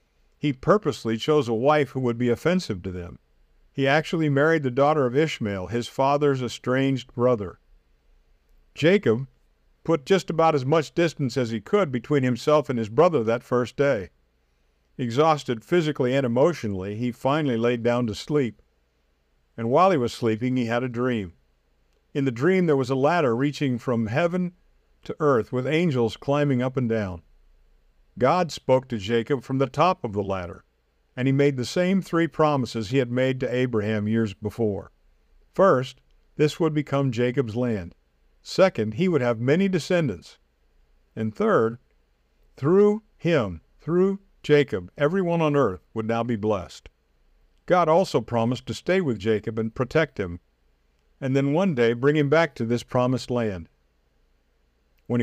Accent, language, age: American, English, 50-69